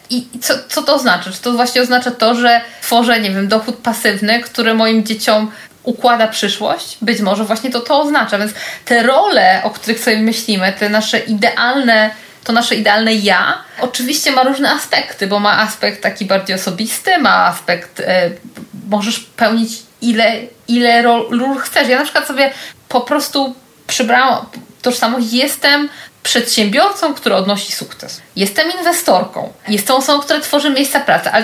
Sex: female